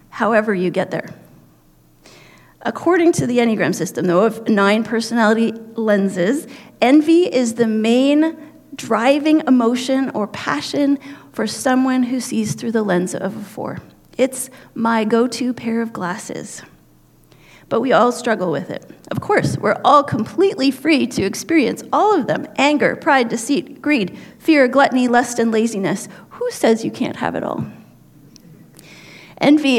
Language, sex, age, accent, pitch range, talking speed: English, female, 40-59, American, 205-265 Hz, 145 wpm